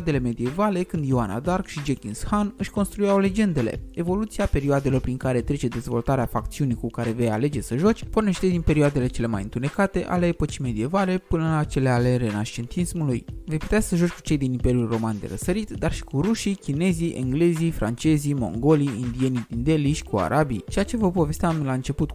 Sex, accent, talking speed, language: male, native, 185 wpm, Romanian